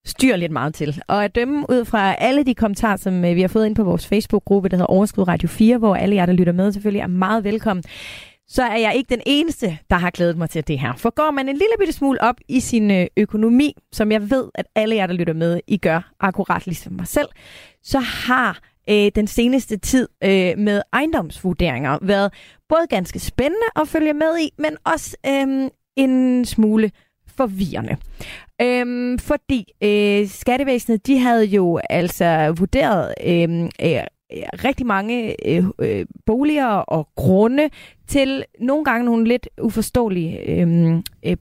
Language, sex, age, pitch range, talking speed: Danish, female, 30-49, 185-255 Hz, 170 wpm